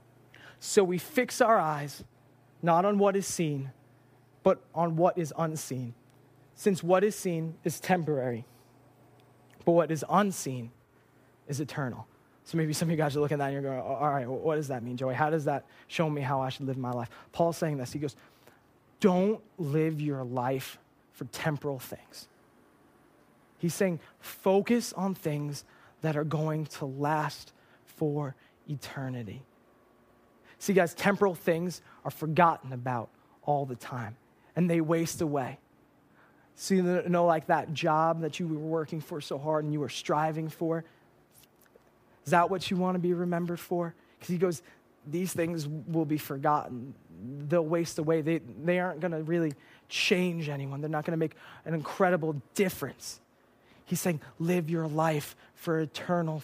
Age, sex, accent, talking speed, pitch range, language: 20-39, male, American, 165 wpm, 135-170 Hz, English